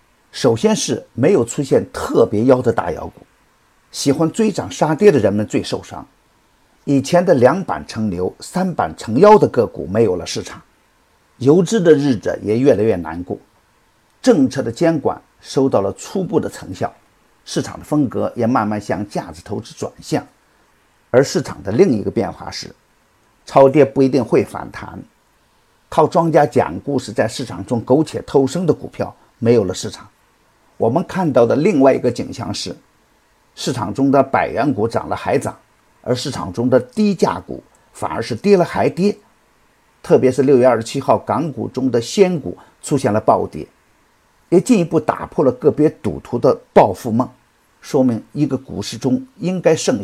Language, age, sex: Chinese, 50-69, male